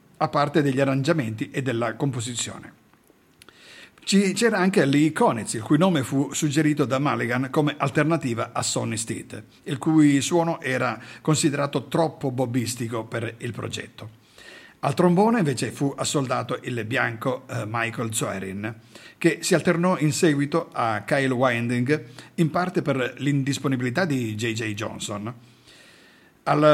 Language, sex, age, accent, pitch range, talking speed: Italian, male, 50-69, native, 120-155 Hz, 130 wpm